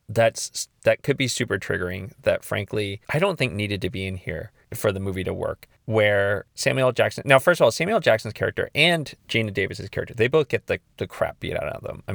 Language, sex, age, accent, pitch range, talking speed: English, male, 30-49, American, 95-130 Hz, 225 wpm